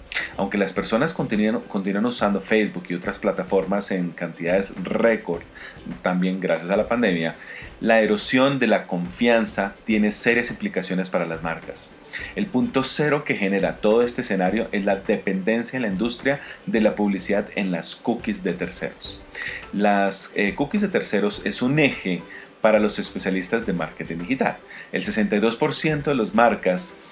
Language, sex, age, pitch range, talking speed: Spanish, male, 40-59, 90-110 Hz, 155 wpm